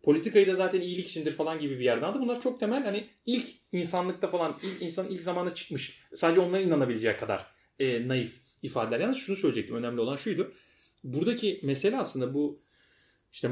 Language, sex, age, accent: Turkish, male, 30-49, native